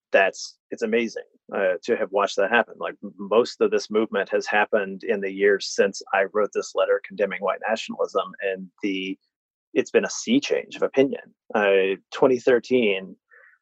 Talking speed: 170 wpm